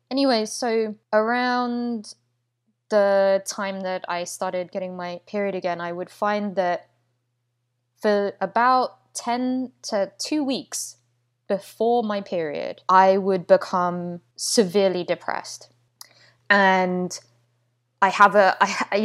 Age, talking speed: 20-39, 110 wpm